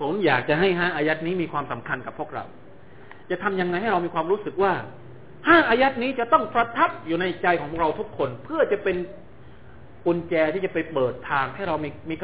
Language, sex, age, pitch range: Thai, male, 30-49, 145-225 Hz